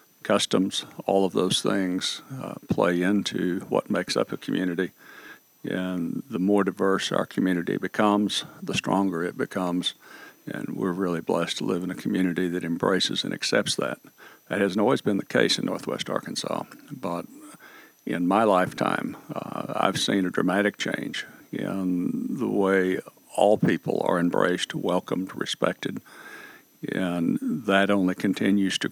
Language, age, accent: English, 60-79, American